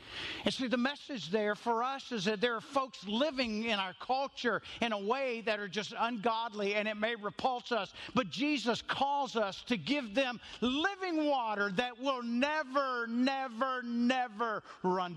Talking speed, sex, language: 170 wpm, male, English